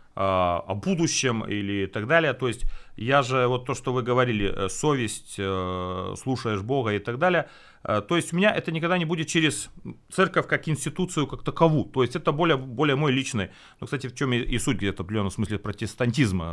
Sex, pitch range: male, 100-150 Hz